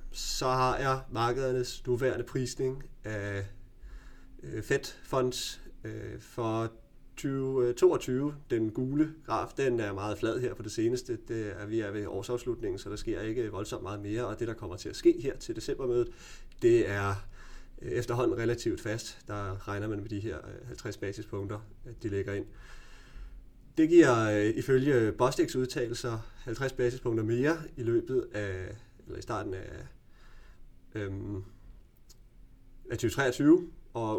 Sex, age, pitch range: male, 30-49, 105-130 Hz